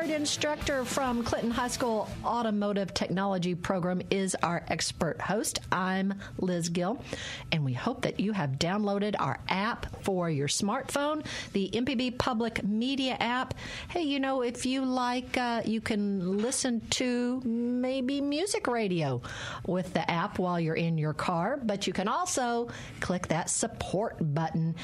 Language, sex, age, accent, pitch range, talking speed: English, female, 50-69, American, 170-250 Hz, 150 wpm